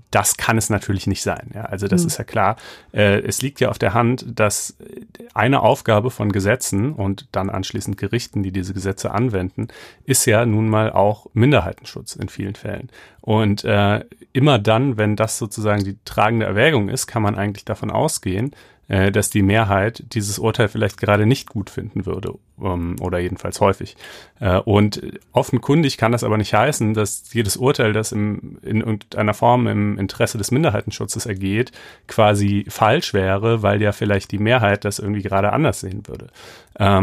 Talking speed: 165 wpm